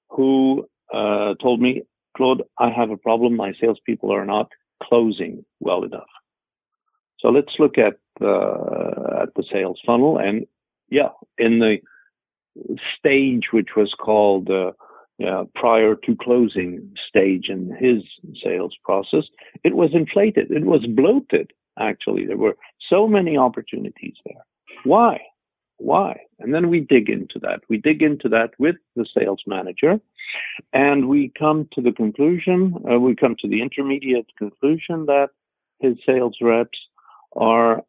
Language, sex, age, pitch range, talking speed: English, male, 50-69, 115-155 Hz, 145 wpm